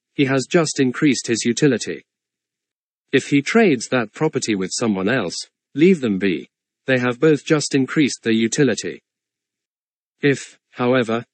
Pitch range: 110-145 Hz